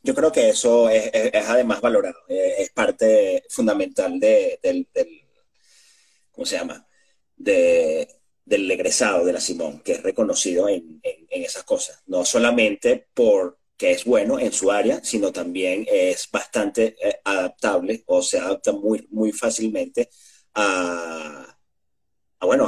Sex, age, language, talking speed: male, 30-49, Spanish, 145 wpm